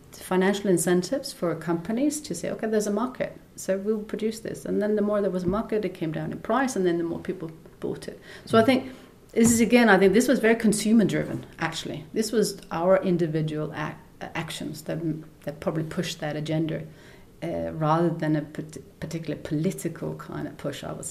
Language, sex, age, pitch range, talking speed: English, female, 40-59, 160-205 Hz, 200 wpm